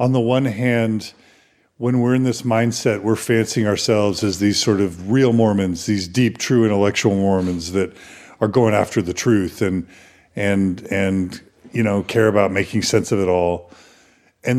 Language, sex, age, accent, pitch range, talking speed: English, male, 40-59, American, 100-125 Hz, 175 wpm